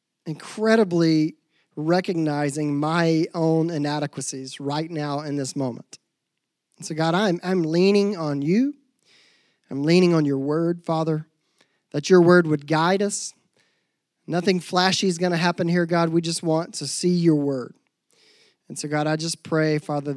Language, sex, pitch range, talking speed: English, male, 150-195 Hz, 150 wpm